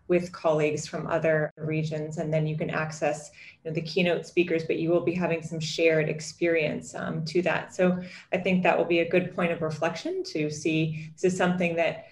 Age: 30-49